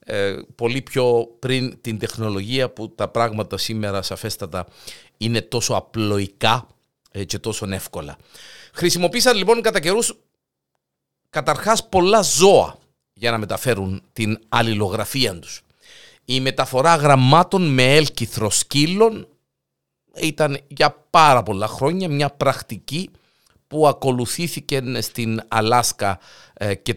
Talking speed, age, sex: 105 wpm, 50-69, male